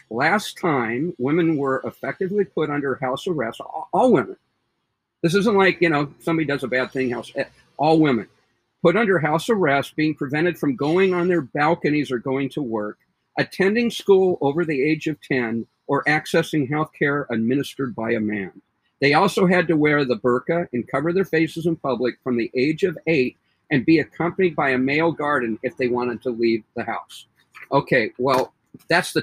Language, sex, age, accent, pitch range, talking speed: English, male, 50-69, American, 125-175 Hz, 185 wpm